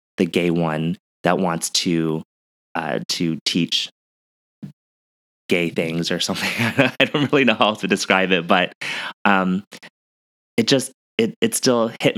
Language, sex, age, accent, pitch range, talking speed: English, male, 20-39, American, 85-105 Hz, 125 wpm